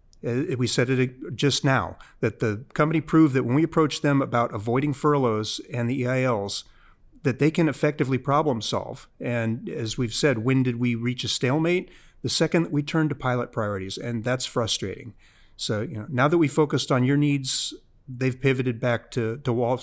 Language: English